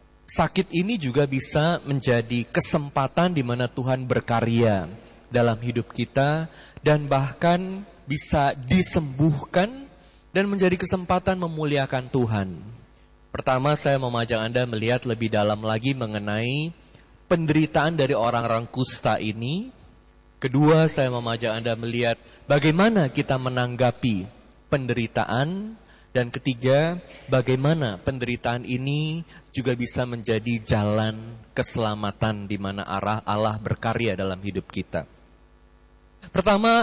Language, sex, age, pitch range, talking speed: Indonesian, male, 20-39, 115-155 Hz, 105 wpm